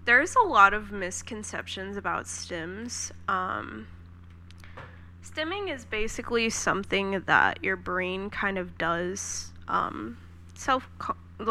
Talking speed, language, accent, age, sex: 110 wpm, English, American, 10-29, female